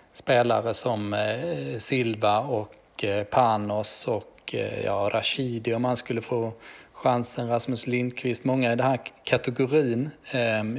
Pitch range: 110-130 Hz